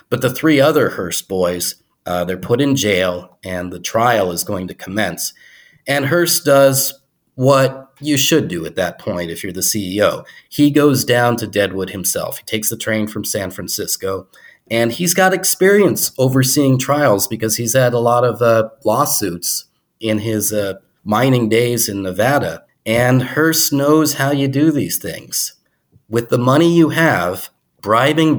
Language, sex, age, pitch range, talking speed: English, male, 30-49, 105-135 Hz, 170 wpm